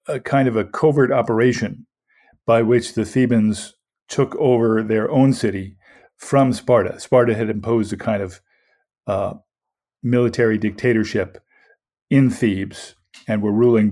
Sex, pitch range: male, 105-125 Hz